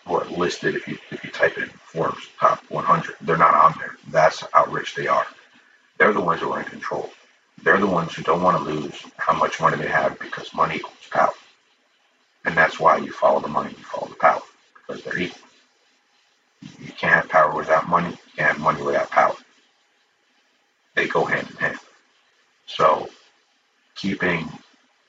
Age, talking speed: 50-69, 180 wpm